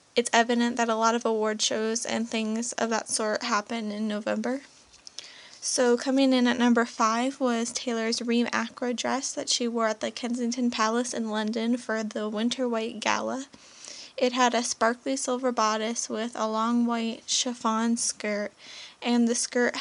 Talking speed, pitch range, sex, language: 170 wpm, 225-250 Hz, female, English